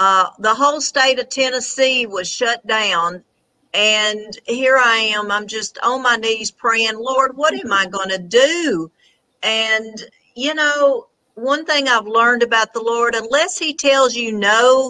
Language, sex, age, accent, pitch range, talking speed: English, female, 50-69, American, 210-260 Hz, 165 wpm